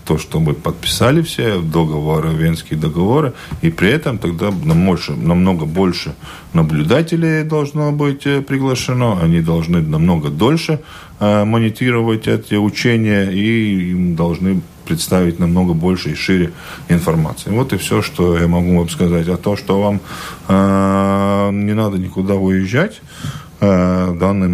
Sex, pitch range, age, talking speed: male, 80-100 Hz, 40-59, 135 wpm